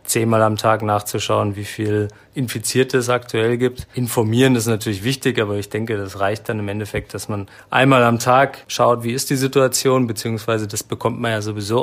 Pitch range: 105-125 Hz